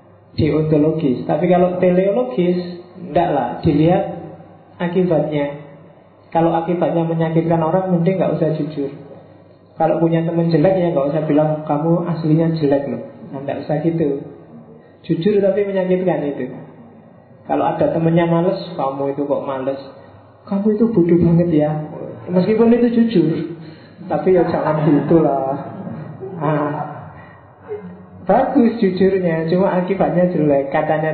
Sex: male